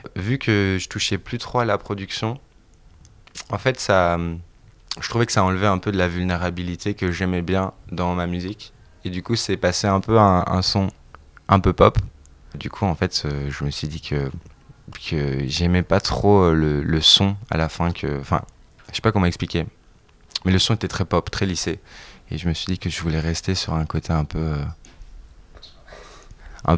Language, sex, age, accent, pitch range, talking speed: French, male, 20-39, French, 85-100 Hz, 205 wpm